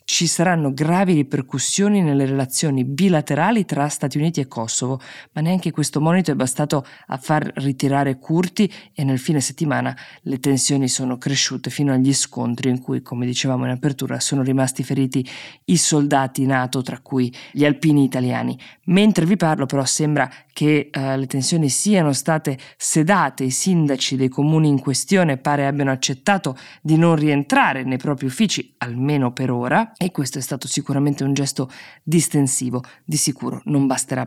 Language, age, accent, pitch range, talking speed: Italian, 20-39, native, 130-155 Hz, 160 wpm